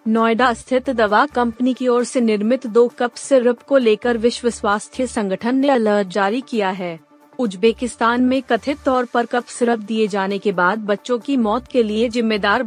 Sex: female